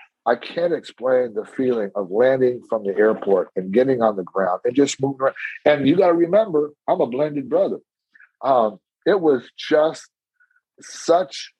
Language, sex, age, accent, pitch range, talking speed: English, male, 50-69, American, 105-135 Hz, 170 wpm